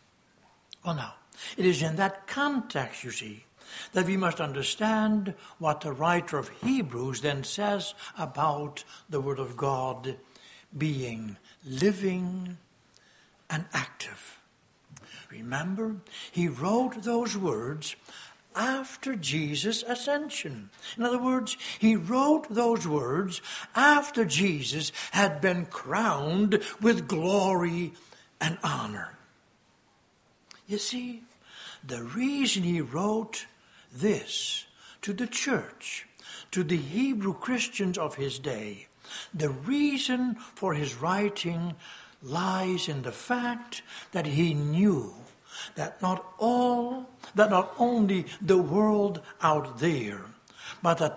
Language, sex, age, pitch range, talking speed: English, male, 60-79, 155-225 Hz, 110 wpm